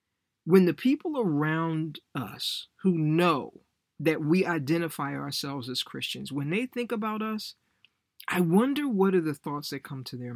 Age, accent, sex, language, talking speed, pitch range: 50-69, American, male, English, 160 wpm, 130-180 Hz